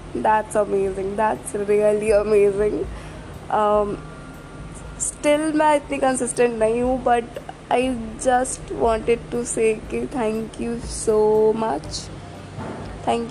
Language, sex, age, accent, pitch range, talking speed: Hindi, female, 20-39, native, 220-265 Hz, 100 wpm